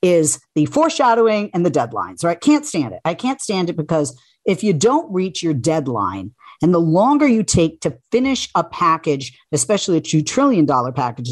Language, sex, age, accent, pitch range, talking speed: English, female, 50-69, American, 145-185 Hz, 190 wpm